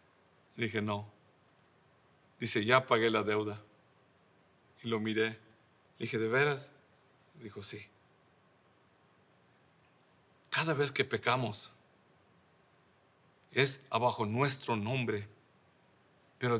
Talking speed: 85 wpm